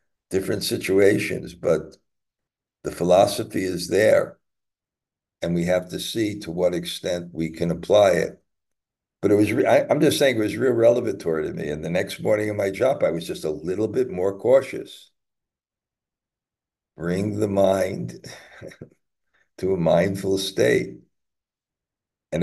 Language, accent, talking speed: English, American, 150 wpm